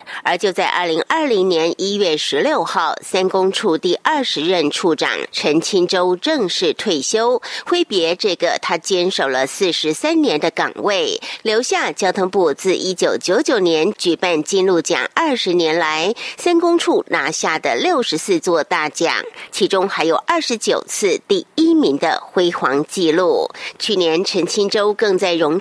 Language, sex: German, female